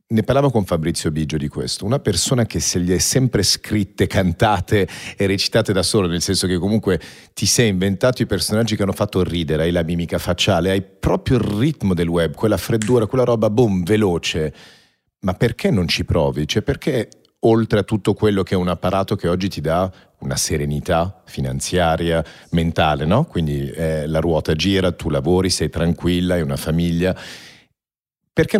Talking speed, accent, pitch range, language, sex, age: 180 wpm, native, 85-110 Hz, Italian, male, 40-59